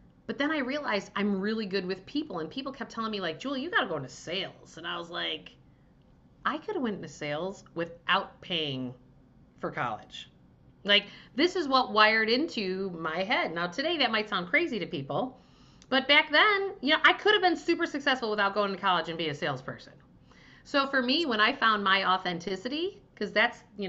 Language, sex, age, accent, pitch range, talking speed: English, female, 40-59, American, 170-240 Hz, 205 wpm